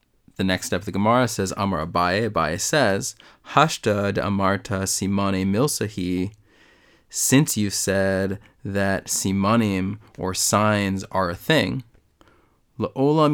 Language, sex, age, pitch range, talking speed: English, male, 20-39, 95-110 Hz, 115 wpm